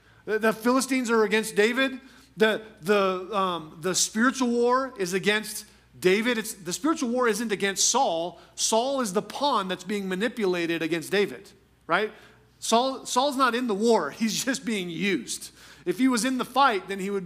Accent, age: American, 40-59